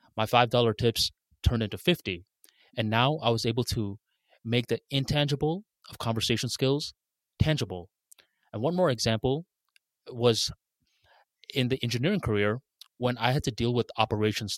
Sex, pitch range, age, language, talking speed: male, 105-130 Hz, 20-39, English, 145 wpm